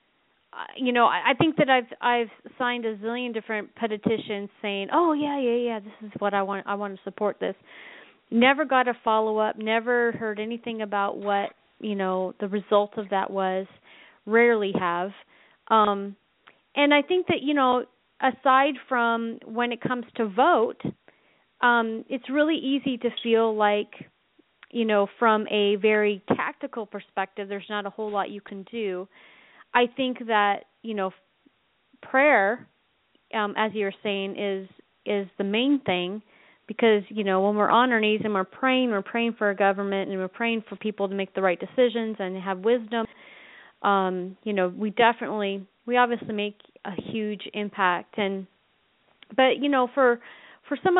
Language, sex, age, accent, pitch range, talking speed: English, female, 30-49, American, 200-245 Hz, 170 wpm